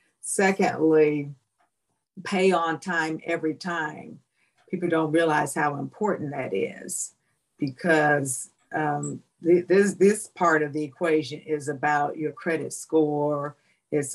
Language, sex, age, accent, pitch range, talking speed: English, female, 50-69, American, 150-170 Hz, 115 wpm